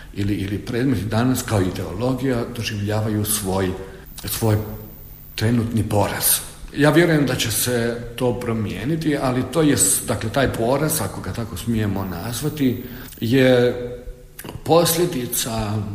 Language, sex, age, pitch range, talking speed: Croatian, male, 50-69, 105-130 Hz, 115 wpm